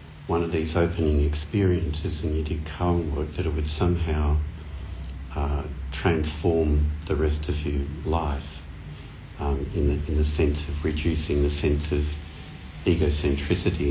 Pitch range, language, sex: 75-90 Hz, English, male